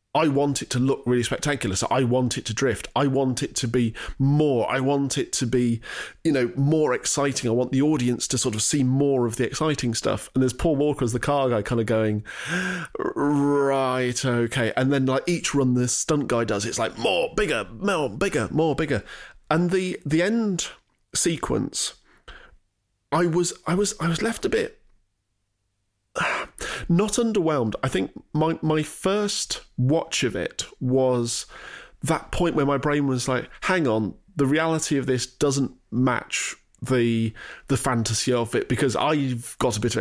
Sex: male